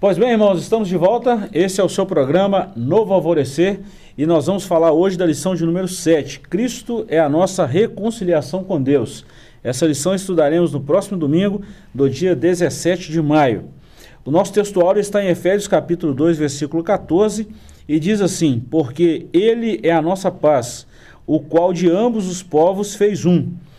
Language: Portuguese